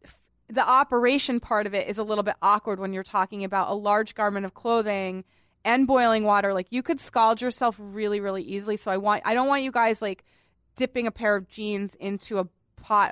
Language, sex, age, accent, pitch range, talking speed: English, female, 30-49, American, 195-235 Hz, 215 wpm